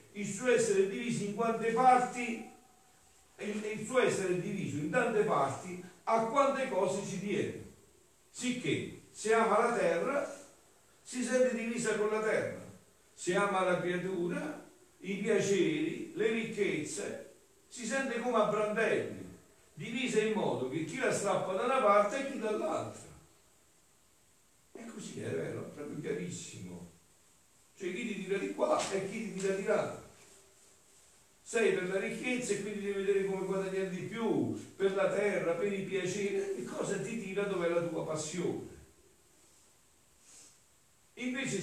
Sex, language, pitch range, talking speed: male, Italian, 185-230 Hz, 145 wpm